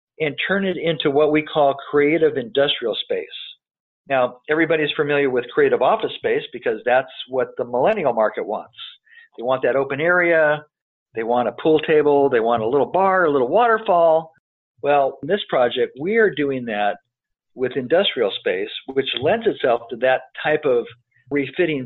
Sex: male